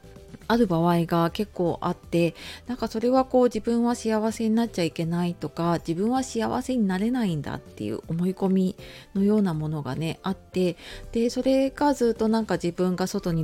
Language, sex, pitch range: Japanese, female, 175-235 Hz